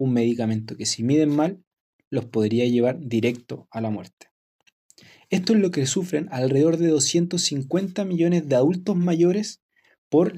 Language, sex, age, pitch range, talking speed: Spanish, male, 20-39, 125-180 Hz, 150 wpm